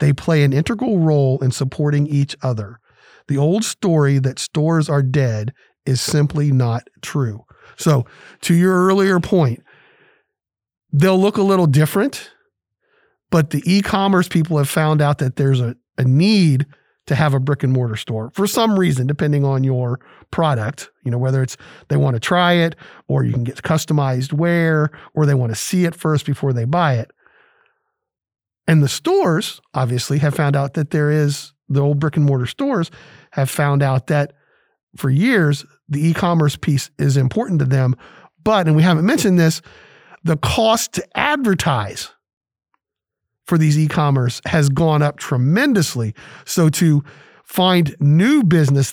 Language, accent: English, American